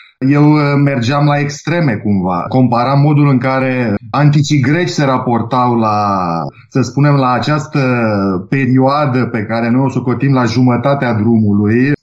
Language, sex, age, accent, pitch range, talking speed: Romanian, male, 30-49, native, 120-155 Hz, 135 wpm